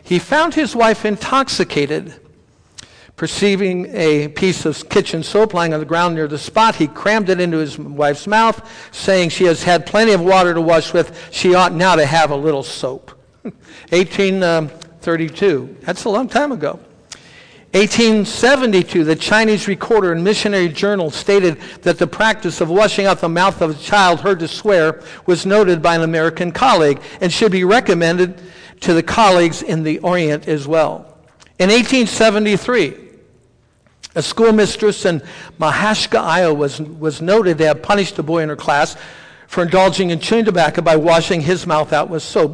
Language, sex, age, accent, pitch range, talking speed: English, male, 60-79, American, 165-205 Hz, 170 wpm